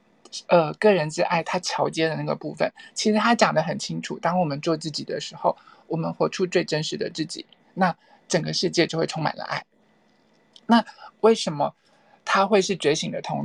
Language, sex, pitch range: Chinese, male, 175-220 Hz